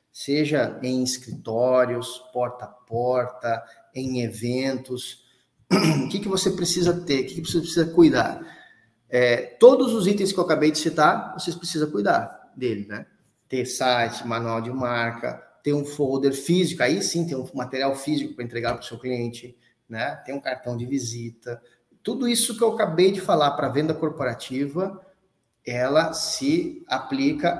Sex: male